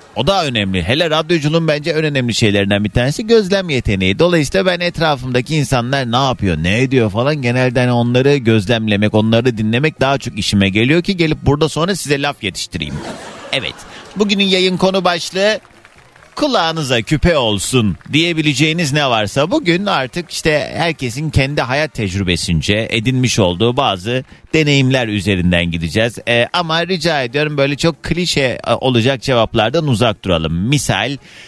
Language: Turkish